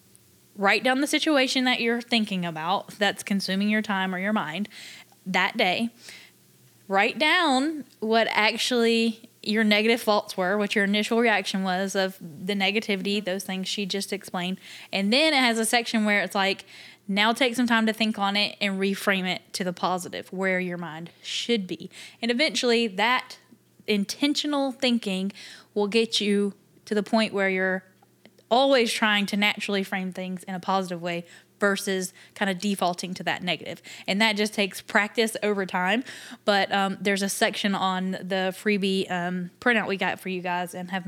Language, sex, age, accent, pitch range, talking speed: English, female, 10-29, American, 185-220 Hz, 175 wpm